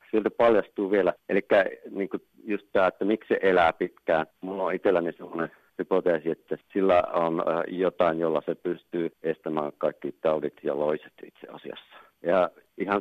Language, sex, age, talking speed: Finnish, male, 50-69, 150 wpm